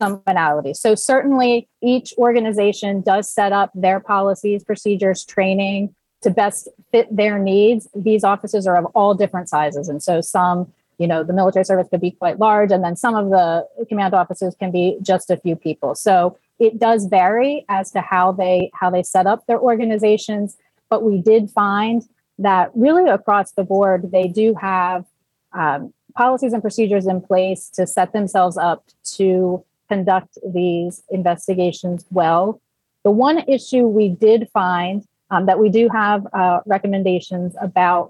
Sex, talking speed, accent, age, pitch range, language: female, 160 wpm, American, 30-49, 180-215 Hz, English